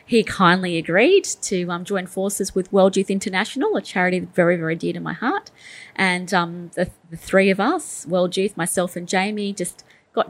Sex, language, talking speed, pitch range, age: female, English, 190 wpm, 175-205 Hz, 30-49